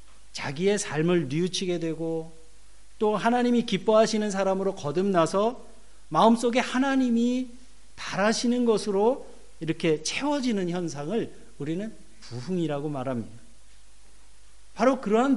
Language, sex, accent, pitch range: Korean, male, native, 150-225 Hz